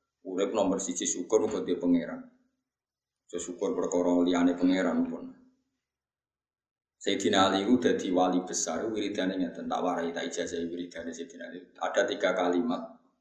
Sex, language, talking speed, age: male, Indonesian, 65 wpm, 20-39